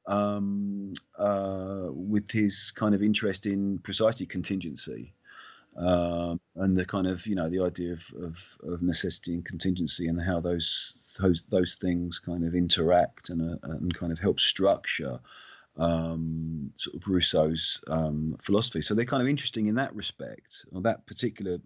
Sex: male